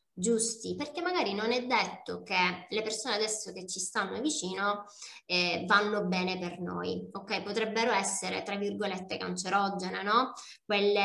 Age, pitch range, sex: 20-39, 195-235 Hz, female